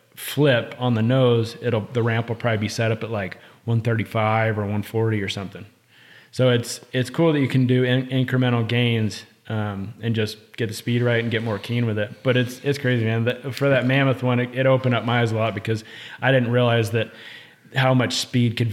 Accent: American